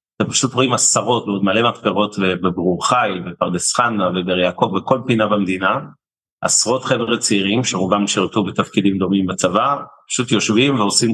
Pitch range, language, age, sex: 100-115 Hz, Hebrew, 30-49, male